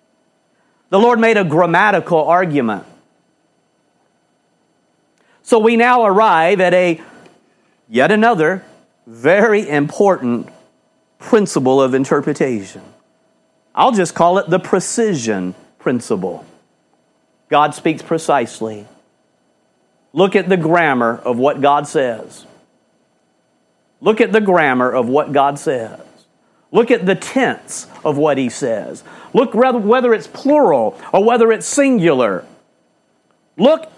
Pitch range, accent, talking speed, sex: 160-230 Hz, American, 110 wpm, male